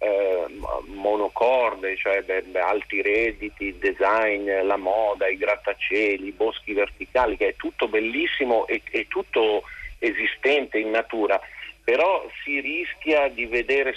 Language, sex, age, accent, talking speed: Italian, male, 50-69, native, 125 wpm